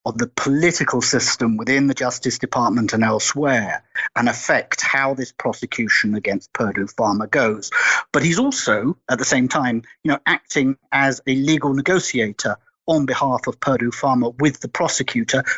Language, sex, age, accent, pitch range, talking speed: English, male, 50-69, British, 125-150 Hz, 160 wpm